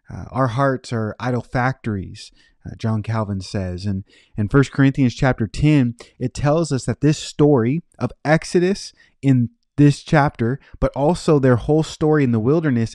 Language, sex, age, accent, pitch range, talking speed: English, male, 30-49, American, 115-145 Hz, 160 wpm